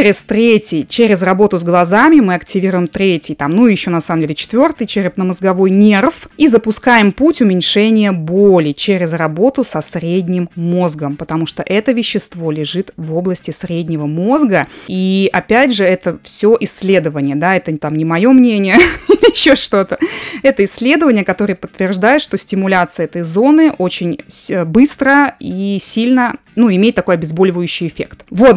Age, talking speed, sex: 20-39, 150 wpm, female